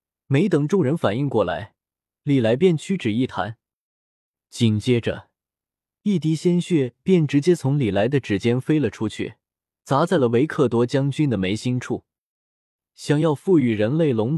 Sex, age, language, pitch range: male, 20-39, Chinese, 110-170 Hz